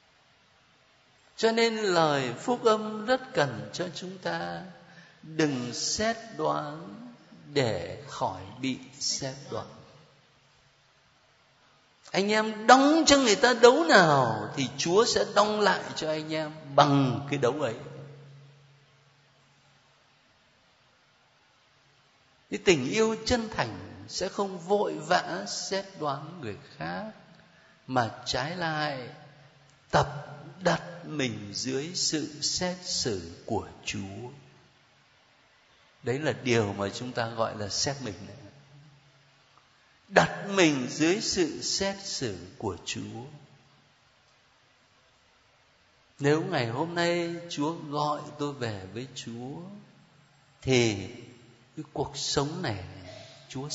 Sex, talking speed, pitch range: male, 105 wpm, 125-170 Hz